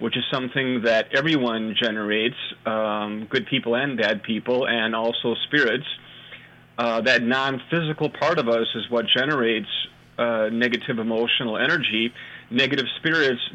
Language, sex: English, male